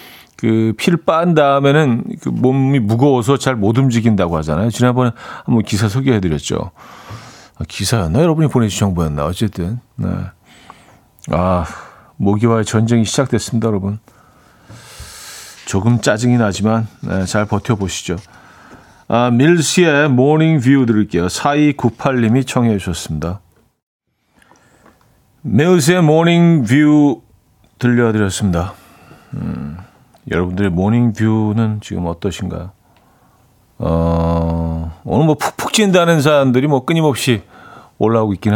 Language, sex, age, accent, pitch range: Korean, male, 40-59, native, 105-145 Hz